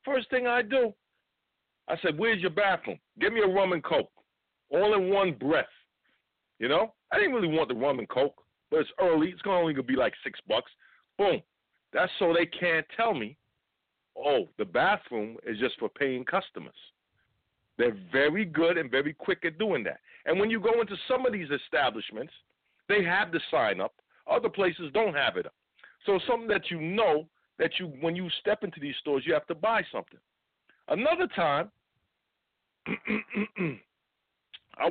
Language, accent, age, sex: English, American, 50-69, male